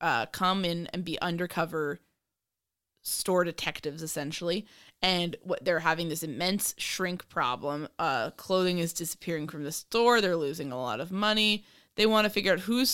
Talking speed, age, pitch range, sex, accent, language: 165 wpm, 20-39, 165-200 Hz, female, American, English